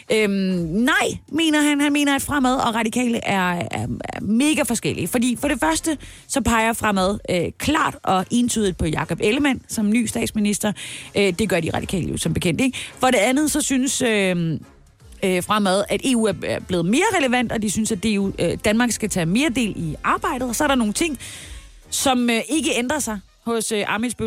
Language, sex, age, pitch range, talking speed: Danish, female, 30-49, 185-250 Hz, 200 wpm